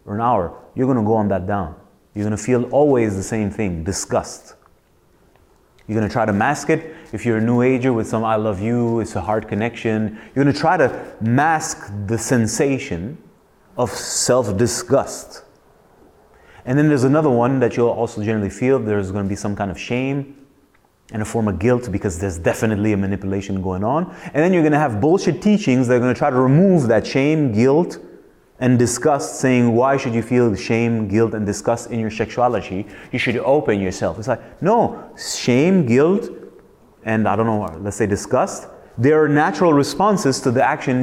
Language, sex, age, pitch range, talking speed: English, male, 30-49, 110-140 Hz, 195 wpm